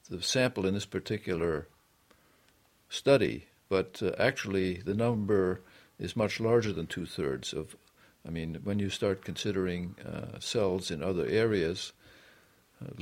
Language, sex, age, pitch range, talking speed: English, male, 60-79, 90-105 Hz, 140 wpm